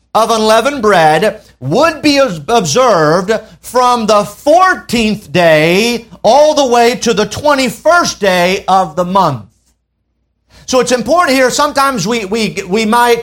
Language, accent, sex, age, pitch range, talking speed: English, American, male, 50-69, 185-255 Hz, 130 wpm